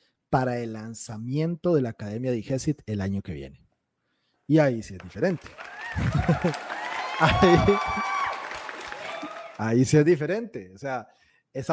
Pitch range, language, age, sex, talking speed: 120-160 Hz, Spanish, 30-49, male, 130 wpm